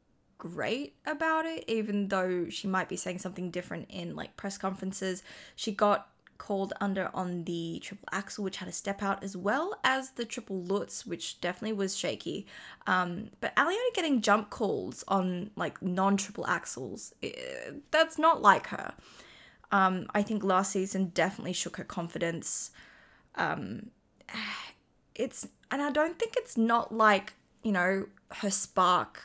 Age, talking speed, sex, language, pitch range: 20-39, 150 wpm, female, English, 185-230 Hz